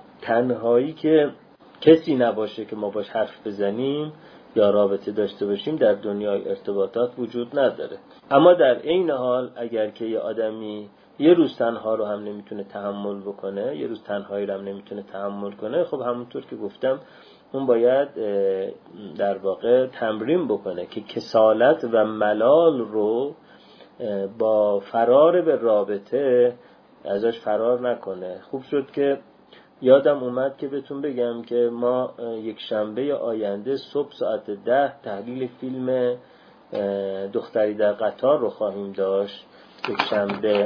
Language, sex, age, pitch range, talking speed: Persian, male, 30-49, 105-130 Hz, 135 wpm